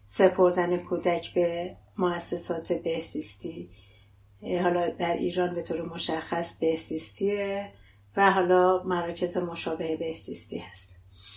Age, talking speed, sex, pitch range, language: 30-49, 95 wpm, female, 165-185 Hz, Persian